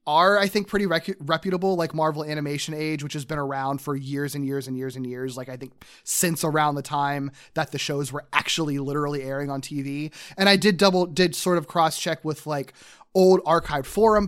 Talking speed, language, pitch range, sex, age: 210 wpm, English, 145-180 Hz, male, 20-39